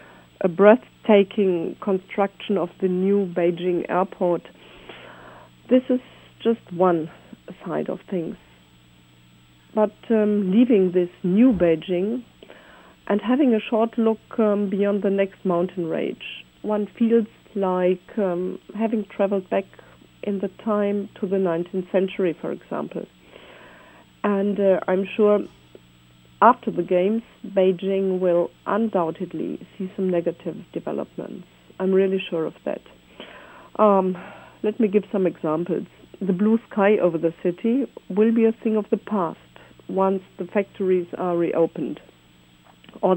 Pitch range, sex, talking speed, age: 170-205 Hz, female, 130 wpm, 50-69